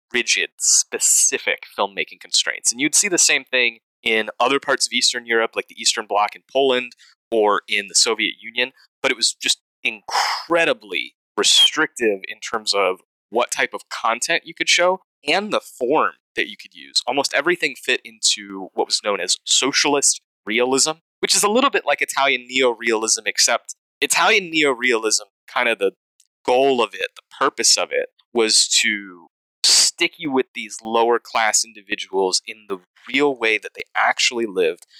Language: English